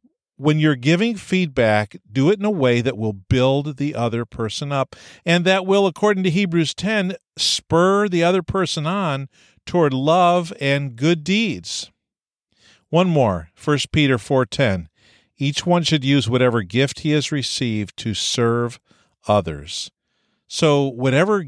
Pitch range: 110-155 Hz